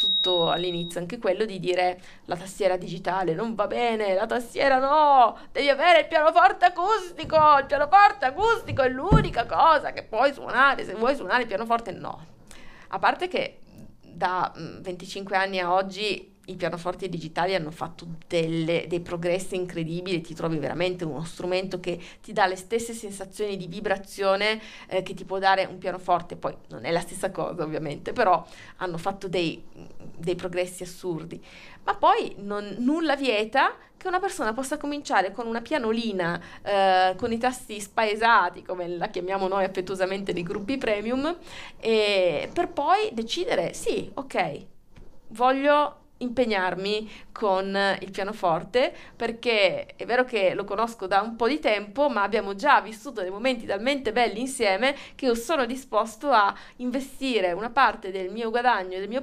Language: Italian